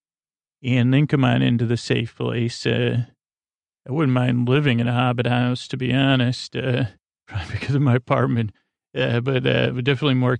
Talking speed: 180 wpm